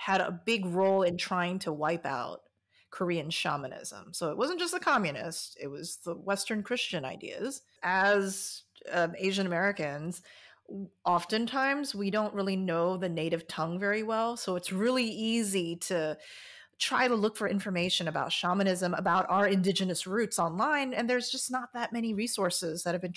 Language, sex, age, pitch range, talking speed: English, female, 30-49, 175-220 Hz, 165 wpm